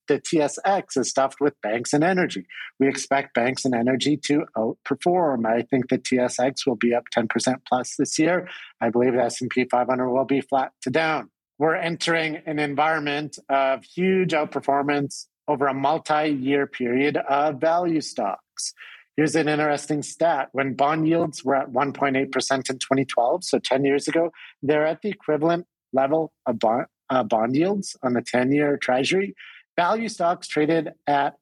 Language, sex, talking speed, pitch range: English, male, 160 wpm, 130-160 Hz